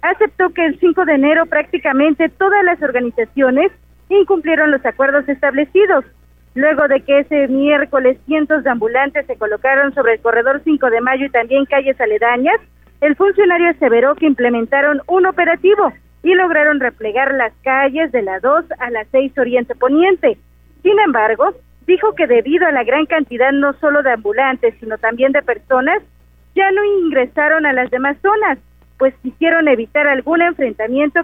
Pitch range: 255-325 Hz